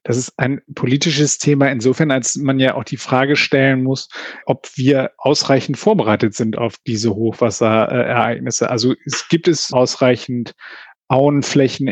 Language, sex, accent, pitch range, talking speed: German, male, German, 125-145 Hz, 140 wpm